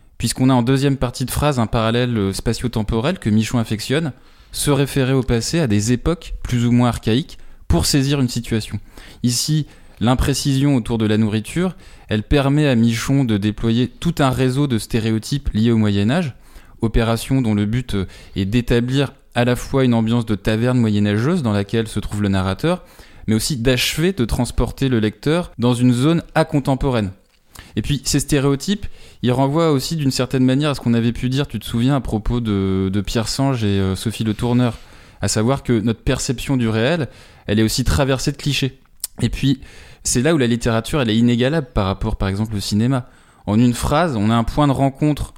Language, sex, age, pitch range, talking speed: French, male, 20-39, 110-140 Hz, 195 wpm